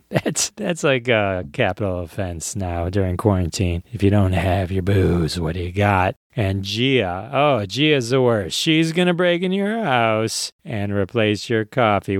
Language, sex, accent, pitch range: English, male, American, 100-130 Hz